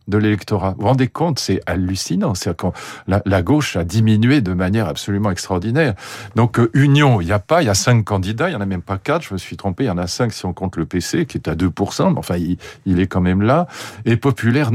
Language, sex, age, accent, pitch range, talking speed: French, male, 50-69, French, 95-125 Hz, 265 wpm